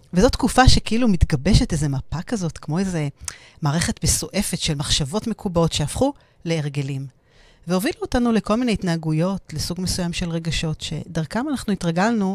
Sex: female